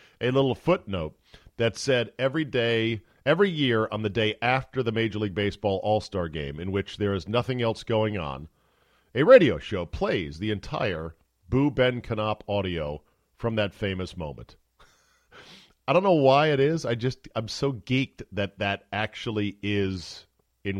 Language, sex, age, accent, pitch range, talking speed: English, male, 40-59, American, 95-130 Hz, 165 wpm